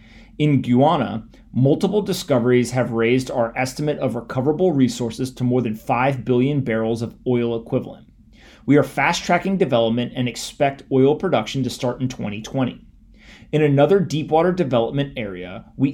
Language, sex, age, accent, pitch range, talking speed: English, male, 30-49, American, 115-150 Hz, 145 wpm